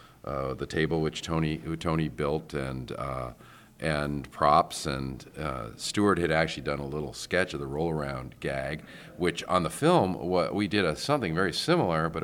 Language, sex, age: English, male, 50-69